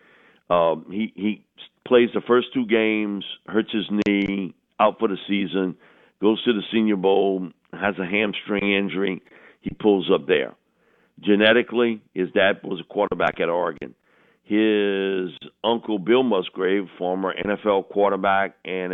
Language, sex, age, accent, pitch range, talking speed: English, male, 50-69, American, 90-115 Hz, 140 wpm